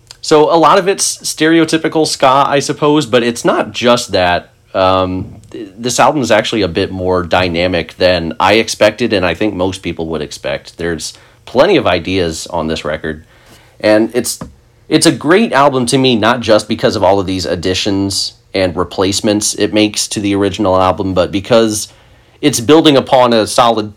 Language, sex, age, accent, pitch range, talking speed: English, male, 30-49, American, 90-115 Hz, 180 wpm